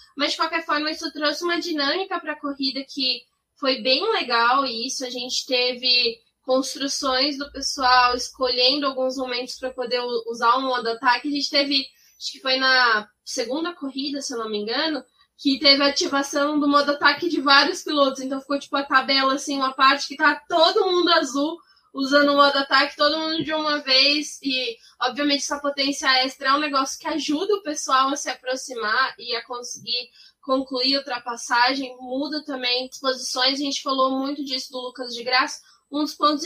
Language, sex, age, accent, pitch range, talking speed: Portuguese, female, 10-29, Brazilian, 255-295 Hz, 190 wpm